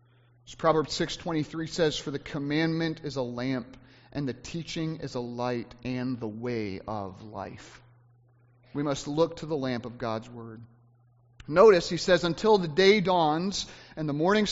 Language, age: English, 30-49